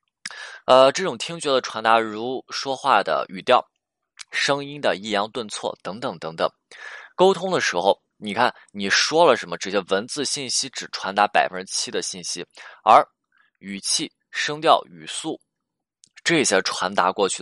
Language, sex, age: Chinese, male, 20-39